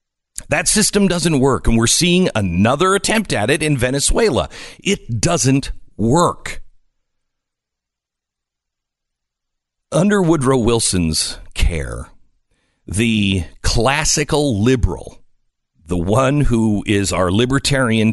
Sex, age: male, 50-69